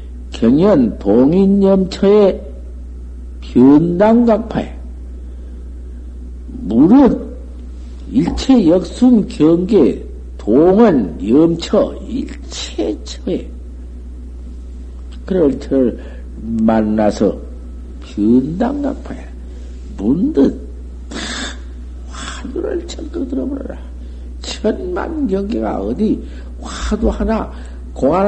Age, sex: 60-79, male